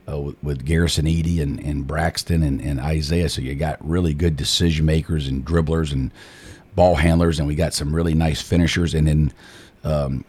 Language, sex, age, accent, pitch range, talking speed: English, male, 50-69, American, 75-90 Hz, 190 wpm